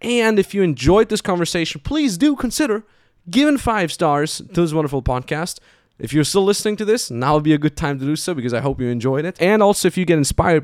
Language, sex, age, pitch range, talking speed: English, male, 20-39, 120-160 Hz, 245 wpm